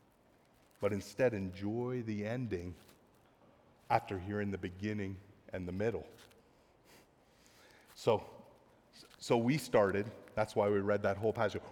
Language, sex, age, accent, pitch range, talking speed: English, male, 30-49, American, 120-155 Hz, 120 wpm